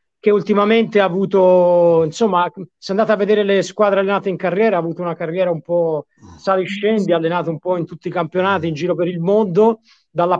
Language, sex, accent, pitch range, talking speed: Italian, male, native, 180-220 Hz, 200 wpm